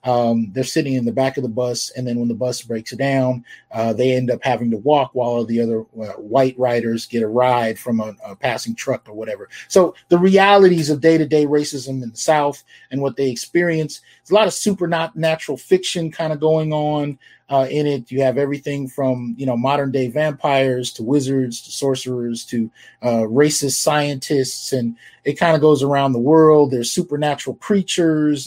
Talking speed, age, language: 195 wpm, 30-49, English